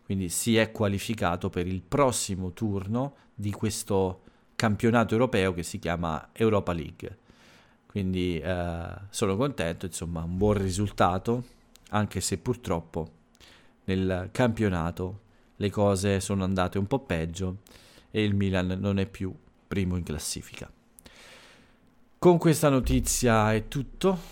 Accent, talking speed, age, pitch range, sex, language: native, 125 wpm, 40-59, 95-115 Hz, male, Italian